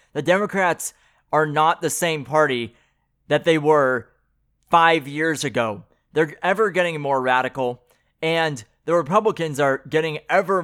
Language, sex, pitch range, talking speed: English, male, 130-170 Hz, 135 wpm